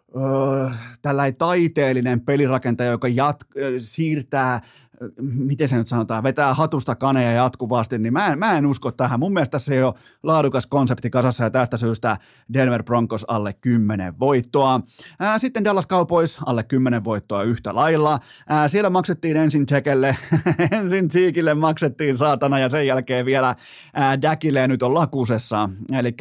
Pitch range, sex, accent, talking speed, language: 120-140 Hz, male, native, 140 wpm, Finnish